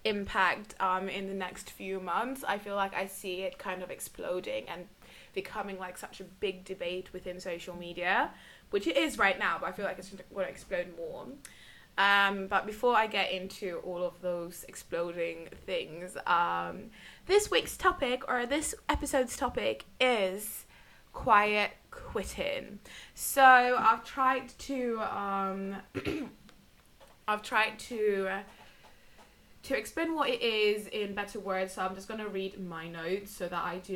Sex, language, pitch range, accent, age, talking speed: female, English, 180-235 Hz, British, 20-39, 160 wpm